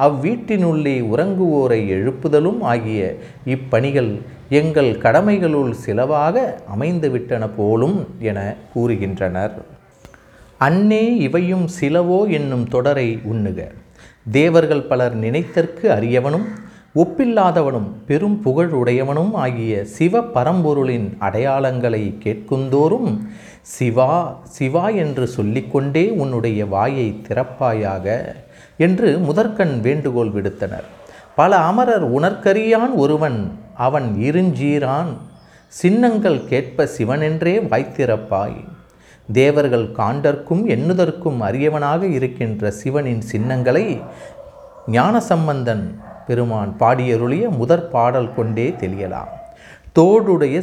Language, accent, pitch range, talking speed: Tamil, native, 115-170 Hz, 80 wpm